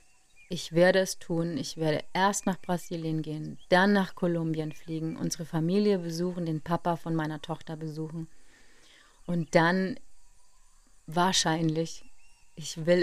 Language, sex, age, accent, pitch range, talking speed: German, female, 30-49, German, 160-185 Hz, 130 wpm